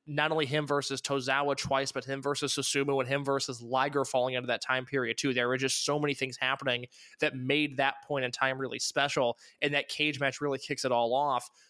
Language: English